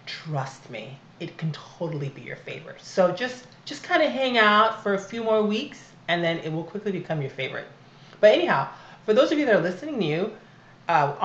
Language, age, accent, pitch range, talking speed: English, 30-49, American, 140-185 Hz, 215 wpm